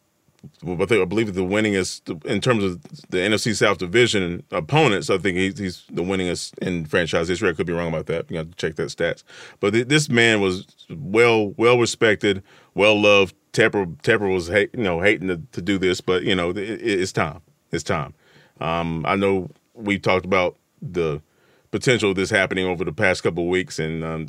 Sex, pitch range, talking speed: male, 90-105 Hz, 210 wpm